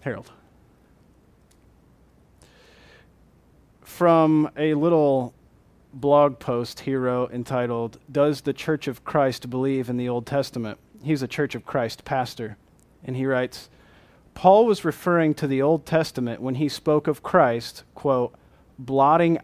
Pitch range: 115-145 Hz